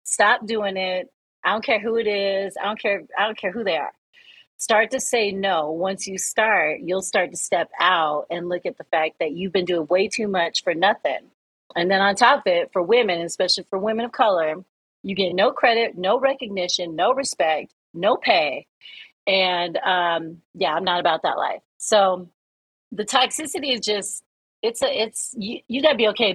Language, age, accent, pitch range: English, 30-49, American, 175-215 Hz